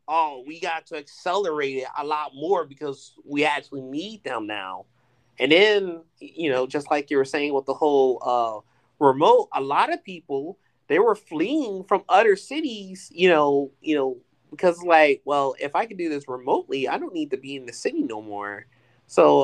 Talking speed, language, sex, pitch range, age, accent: 195 wpm, English, male, 140-200 Hz, 30-49, American